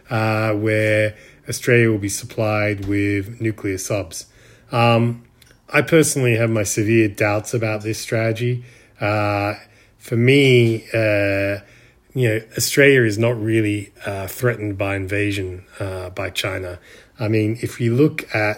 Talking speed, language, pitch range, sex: 135 wpm, English, 105-125 Hz, male